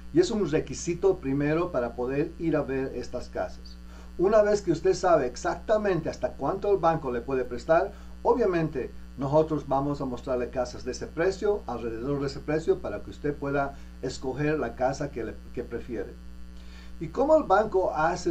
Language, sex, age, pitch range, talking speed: English, male, 50-69, 120-170 Hz, 175 wpm